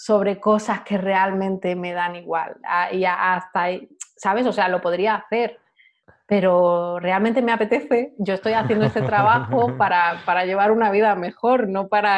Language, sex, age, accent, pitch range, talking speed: Spanish, female, 30-49, Spanish, 180-215 Hz, 165 wpm